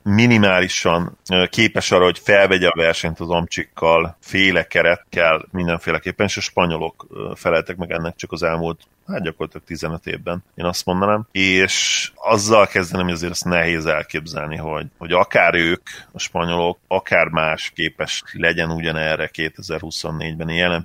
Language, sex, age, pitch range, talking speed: Hungarian, male, 30-49, 80-90 Hz, 145 wpm